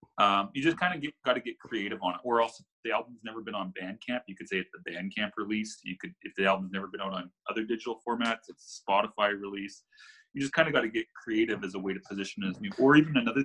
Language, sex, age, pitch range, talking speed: English, male, 30-49, 100-150 Hz, 270 wpm